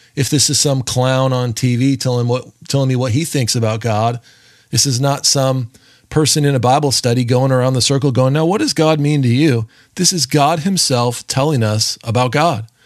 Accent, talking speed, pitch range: American, 210 wpm, 120-140 Hz